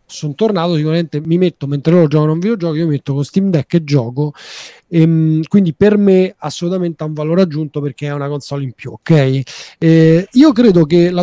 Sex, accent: male, native